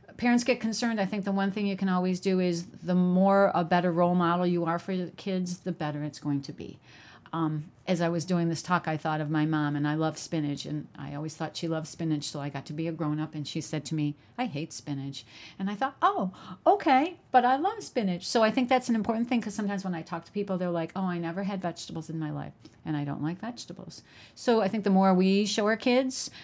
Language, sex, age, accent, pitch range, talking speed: English, female, 50-69, American, 165-205 Hz, 260 wpm